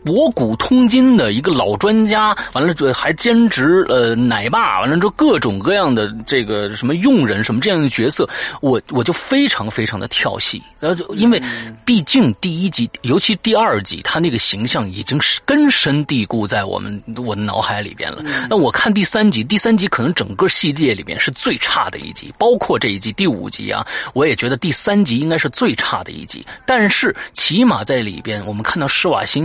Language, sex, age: French, male, 30-49